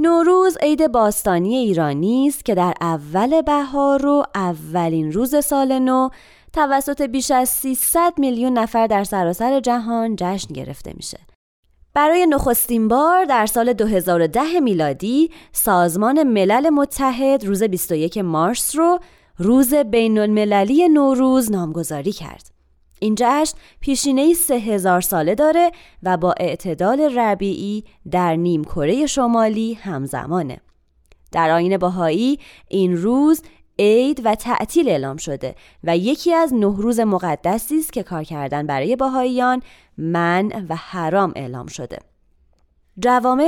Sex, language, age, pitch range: female, Persian, 20-39, 175-265 Hz